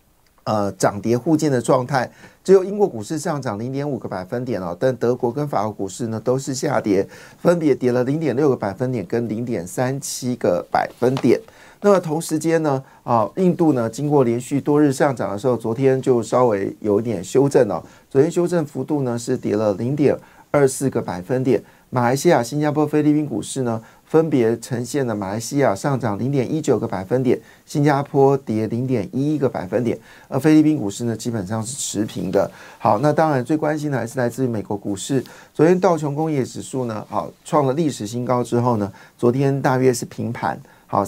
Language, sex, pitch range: Chinese, male, 115-145 Hz